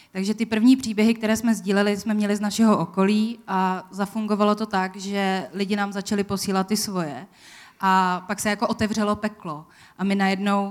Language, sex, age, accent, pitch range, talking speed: Czech, female, 20-39, native, 185-205 Hz, 180 wpm